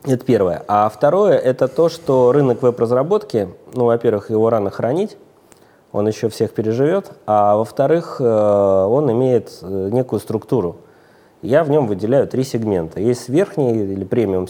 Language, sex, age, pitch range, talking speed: Russian, male, 20-39, 95-130 Hz, 140 wpm